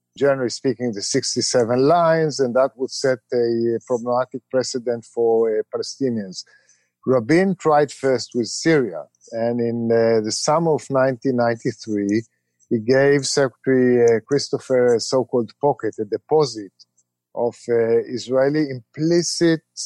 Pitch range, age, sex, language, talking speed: 115-140 Hz, 50-69, male, English, 125 wpm